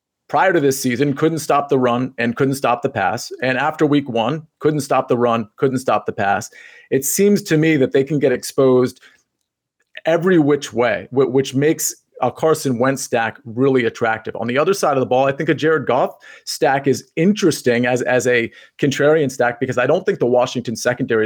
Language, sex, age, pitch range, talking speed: English, male, 30-49, 120-145 Hz, 205 wpm